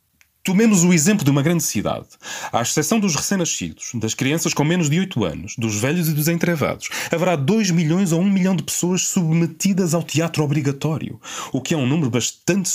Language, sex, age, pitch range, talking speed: Portuguese, male, 30-49, 120-180 Hz, 195 wpm